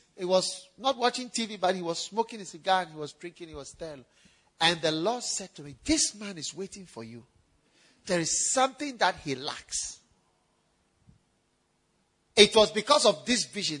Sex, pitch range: male, 155-240 Hz